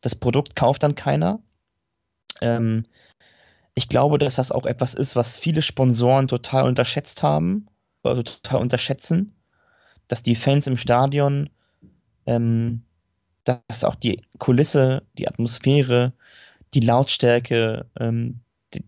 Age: 20-39